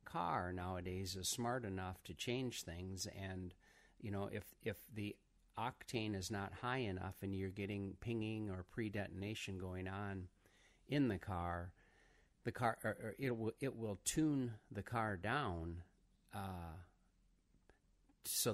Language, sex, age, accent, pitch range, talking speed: English, male, 50-69, American, 95-115 Hz, 140 wpm